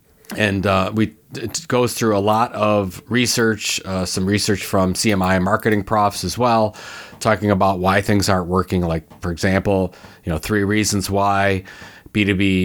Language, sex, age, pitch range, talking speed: English, male, 30-49, 95-115 Hz, 160 wpm